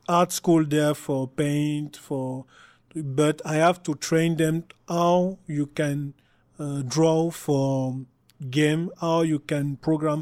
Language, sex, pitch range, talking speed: English, male, 135-160 Hz, 135 wpm